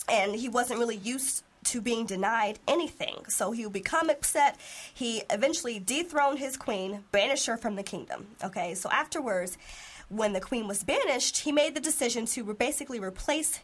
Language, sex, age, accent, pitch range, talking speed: English, female, 20-39, American, 195-260 Hz, 170 wpm